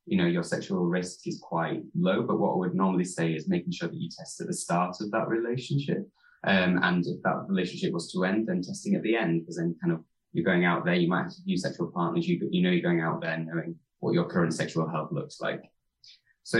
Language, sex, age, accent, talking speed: English, male, 20-39, British, 255 wpm